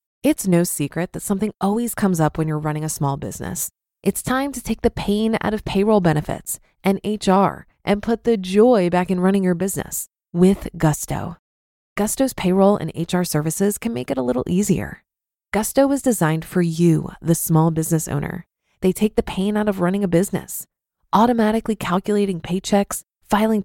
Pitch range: 175-230 Hz